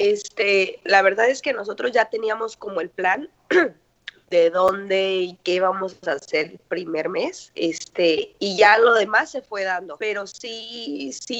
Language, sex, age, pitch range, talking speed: Spanish, female, 20-39, 170-220 Hz, 170 wpm